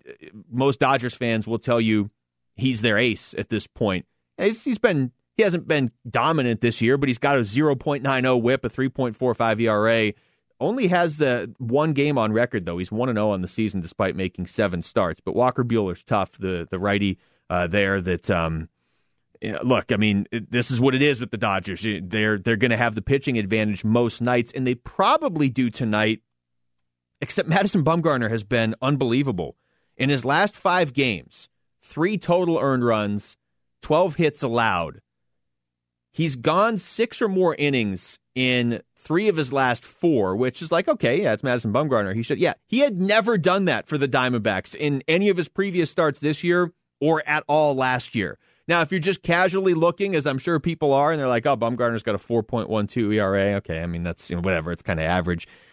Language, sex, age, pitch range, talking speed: English, male, 30-49, 105-150 Hz, 200 wpm